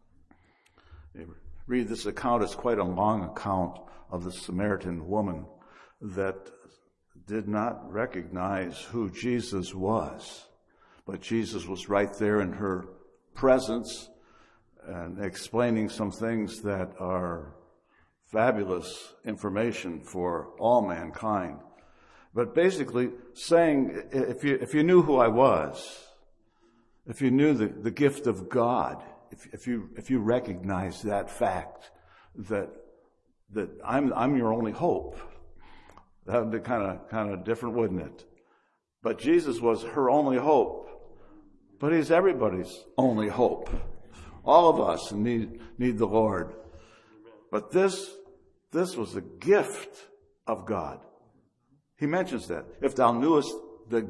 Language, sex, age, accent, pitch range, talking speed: English, male, 60-79, American, 95-130 Hz, 125 wpm